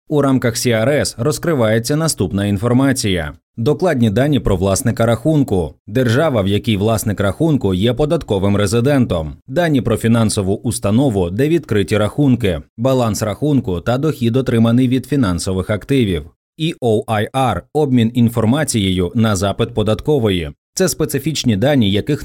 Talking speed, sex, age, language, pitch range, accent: 120 wpm, male, 30-49, Ukrainian, 105-140 Hz, native